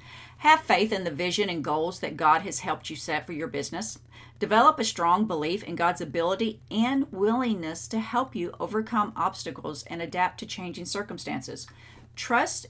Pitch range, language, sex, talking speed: 155-215 Hz, English, female, 170 wpm